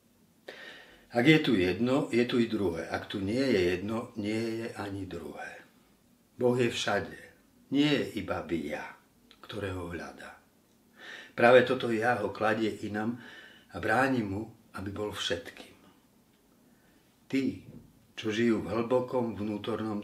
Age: 50-69